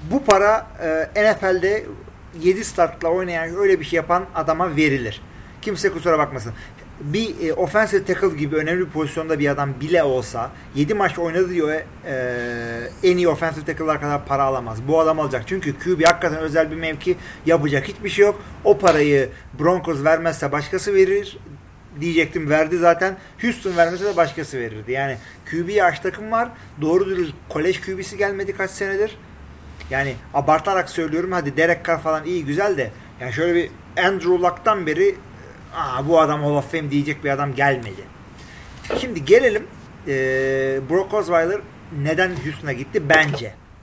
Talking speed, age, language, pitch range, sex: 155 wpm, 40-59, Turkish, 140-180 Hz, male